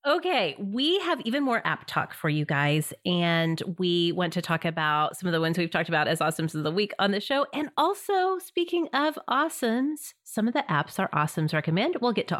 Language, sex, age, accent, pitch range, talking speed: English, female, 30-49, American, 165-265 Hz, 225 wpm